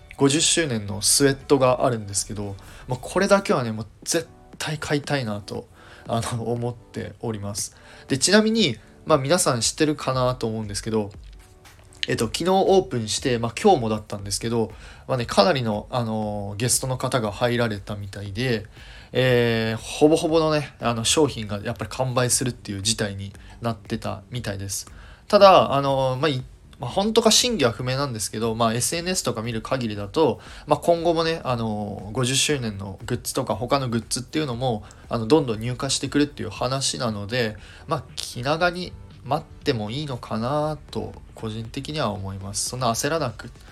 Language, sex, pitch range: Japanese, male, 105-135 Hz